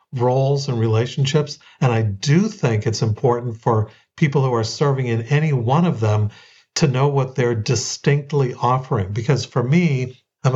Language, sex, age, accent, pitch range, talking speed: English, male, 50-69, American, 115-145 Hz, 165 wpm